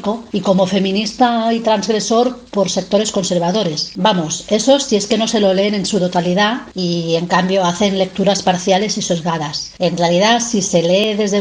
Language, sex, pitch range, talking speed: Spanish, female, 180-210 Hz, 180 wpm